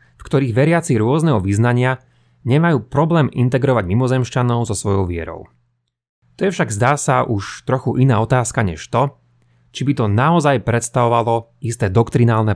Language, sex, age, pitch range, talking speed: Slovak, male, 30-49, 105-135 Hz, 145 wpm